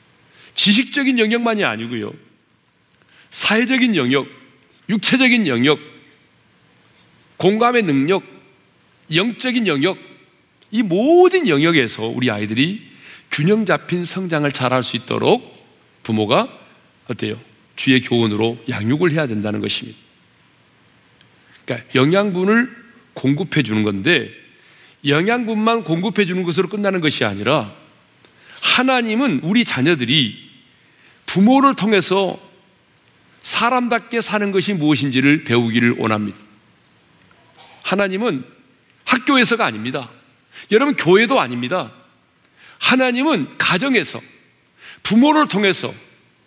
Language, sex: Korean, male